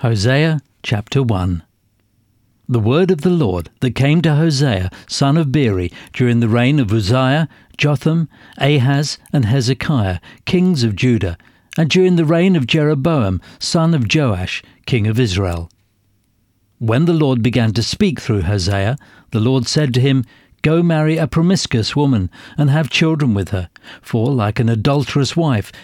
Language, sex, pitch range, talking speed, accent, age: English, male, 105-145 Hz, 155 wpm, British, 60-79